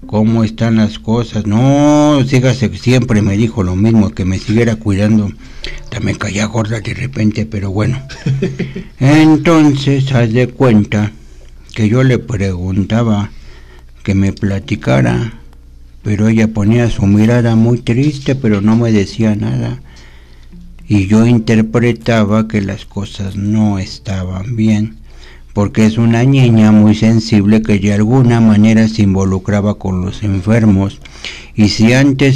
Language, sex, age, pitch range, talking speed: Spanish, male, 60-79, 105-125 Hz, 135 wpm